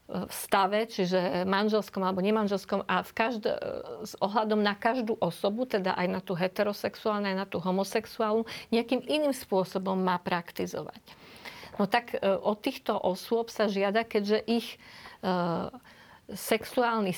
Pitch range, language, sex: 195-225 Hz, Slovak, female